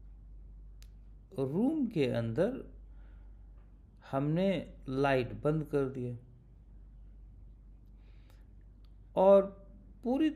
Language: Hindi